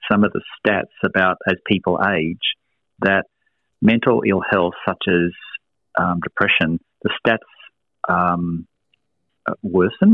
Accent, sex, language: Australian, male, English